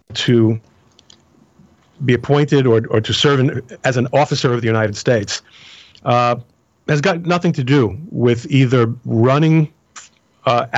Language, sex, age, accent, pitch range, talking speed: English, male, 50-69, American, 115-145 Hz, 140 wpm